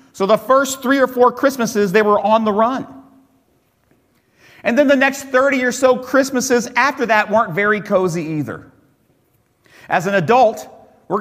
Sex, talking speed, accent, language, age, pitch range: male, 160 wpm, American, English, 40-59, 130-220 Hz